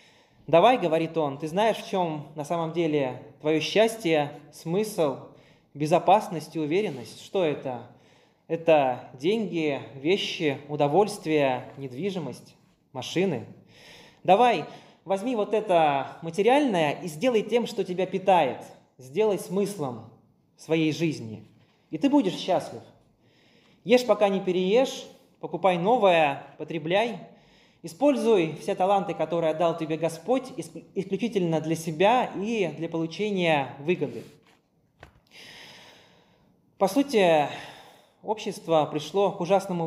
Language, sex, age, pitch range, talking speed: Russian, male, 20-39, 150-200 Hz, 105 wpm